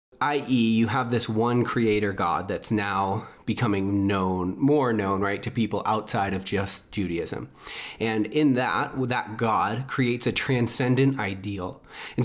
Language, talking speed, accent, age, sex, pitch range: English, 145 wpm, American, 30-49, male, 100-130 Hz